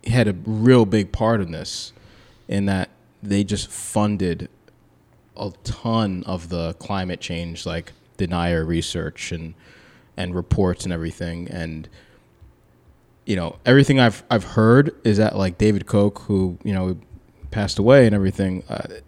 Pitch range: 90-115 Hz